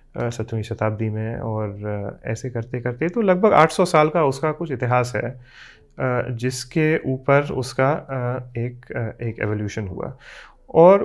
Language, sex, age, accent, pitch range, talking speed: Hindi, male, 30-49, native, 115-145 Hz, 130 wpm